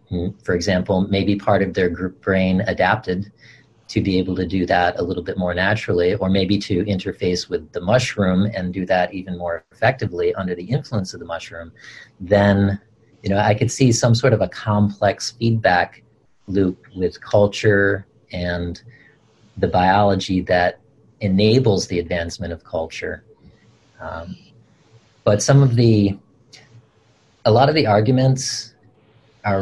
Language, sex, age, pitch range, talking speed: English, male, 40-59, 95-115 Hz, 150 wpm